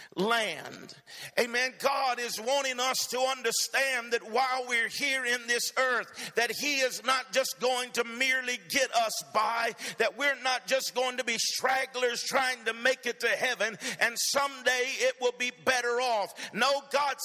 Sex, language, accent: male, English, American